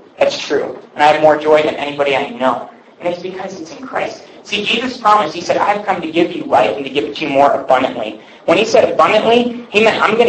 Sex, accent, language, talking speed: male, American, English, 255 wpm